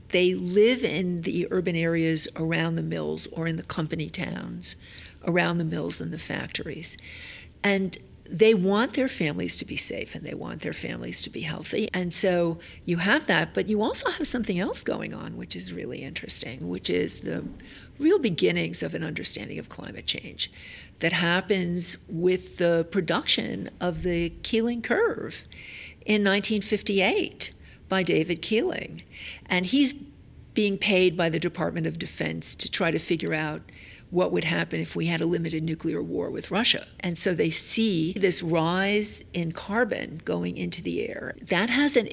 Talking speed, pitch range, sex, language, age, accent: 170 wpm, 165-215 Hz, female, English, 50-69, American